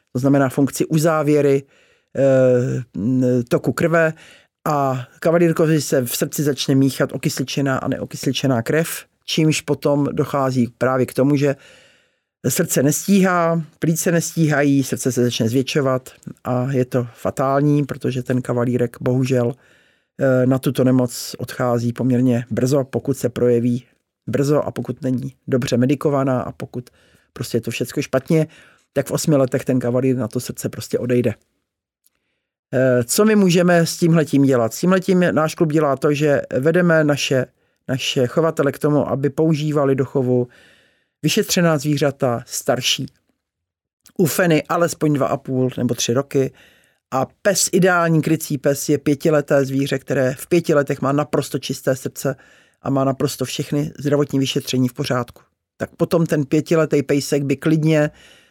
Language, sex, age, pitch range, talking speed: Czech, male, 50-69, 125-155 Hz, 140 wpm